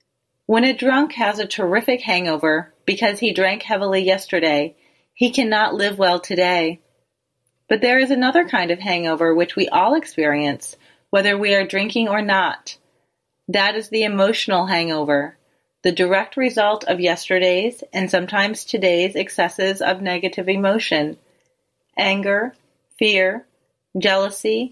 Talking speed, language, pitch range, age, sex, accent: 130 wpm, English, 175-225 Hz, 30-49, female, American